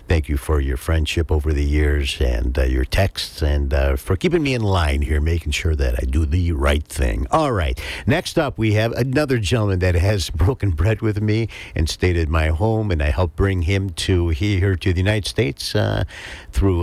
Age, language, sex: 60-79, English, male